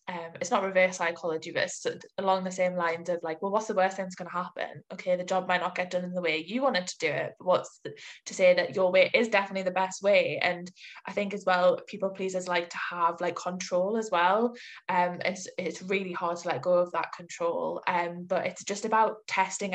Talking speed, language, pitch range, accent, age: 250 wpm, English, 175-190 Hz, British, 10-29